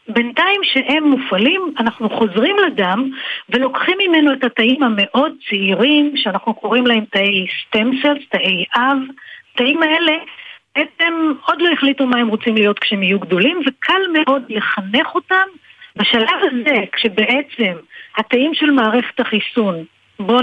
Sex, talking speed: female, 130 wpm